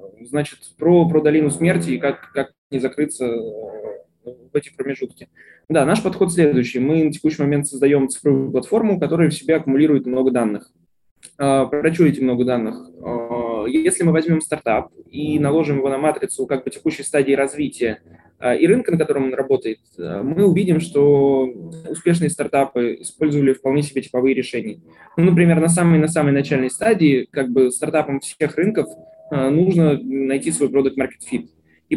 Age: 20-39